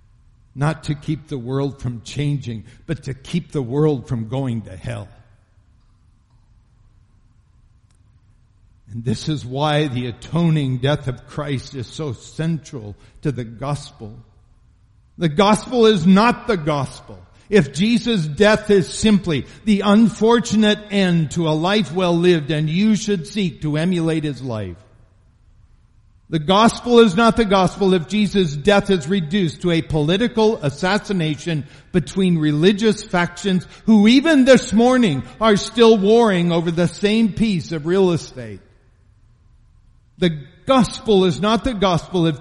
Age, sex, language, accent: 60-79, male, English, American